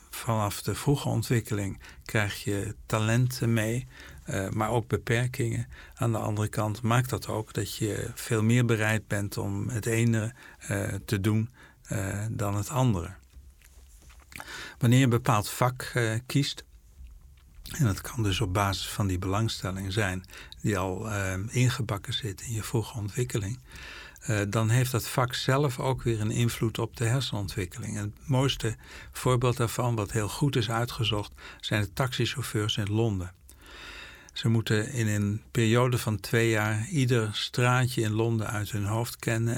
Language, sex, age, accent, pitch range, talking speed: Dutch, male, 60-79, Dutch, 100-120 Hz, 150 wpm